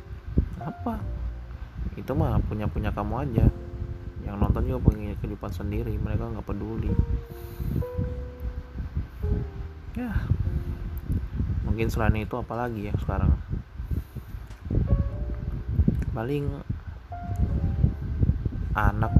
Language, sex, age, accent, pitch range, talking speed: Indonesian, male, 20-39, native, 90-105 Hz, 80 wpm